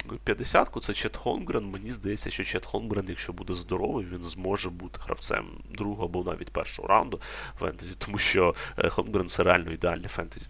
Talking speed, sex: 165 wpm, male